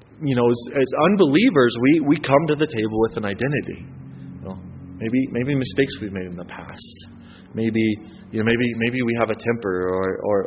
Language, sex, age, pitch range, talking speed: English, male, 30-49, 110-140 Hz, 195 wpm